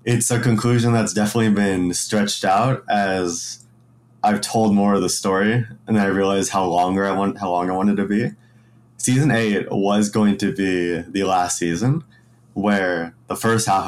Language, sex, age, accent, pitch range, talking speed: English, male, 20-39, American, 95-115 Hz, 185 wpm